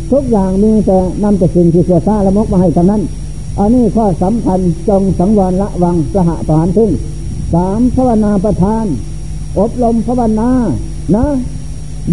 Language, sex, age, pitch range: Thai, male, 60-79, 170-210 Hz